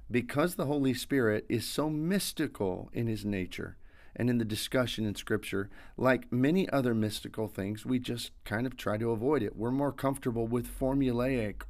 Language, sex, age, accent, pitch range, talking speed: English, male, 40-59, American, 110-130 Hz, 175 wpm